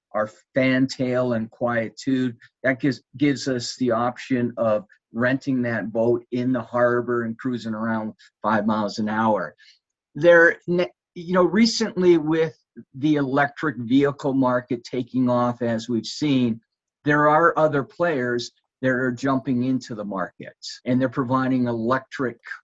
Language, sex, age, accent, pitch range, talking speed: English, male, 50-69, American, 120-145 Hz, 140 wpm